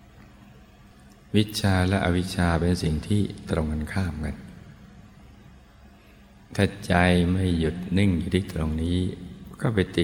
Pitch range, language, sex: 80-90 Hz, Thai, male